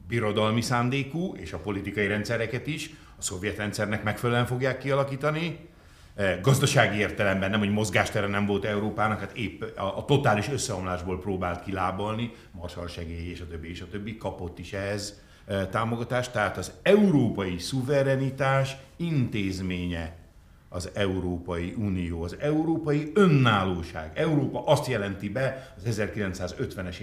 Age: 60-79